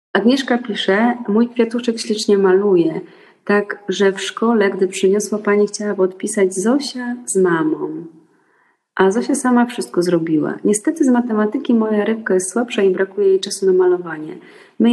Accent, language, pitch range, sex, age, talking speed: native, Polish, 185-230 Hz, female, 30-49, 150 wpm